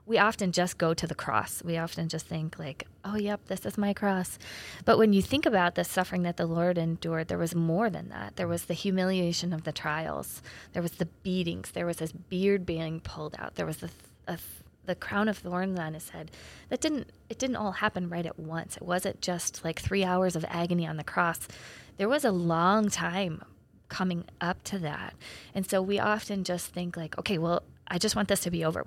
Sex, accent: female, American